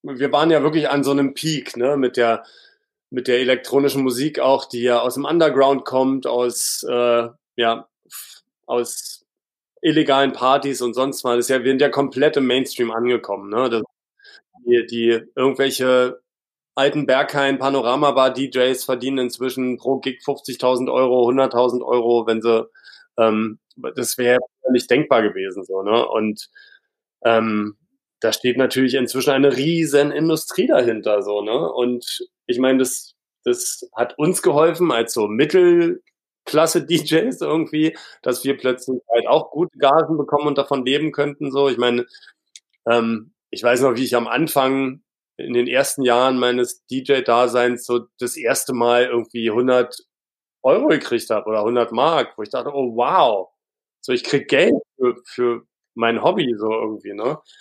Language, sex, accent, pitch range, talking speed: German, male, German, 120-150 Hz, 155 wpm